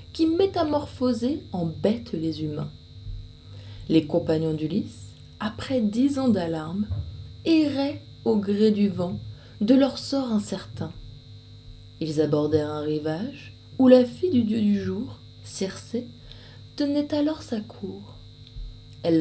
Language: French